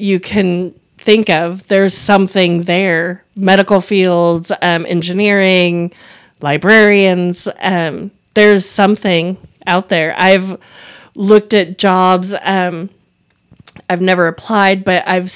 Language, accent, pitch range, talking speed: English, American, 180-210 Hz, 105 wpm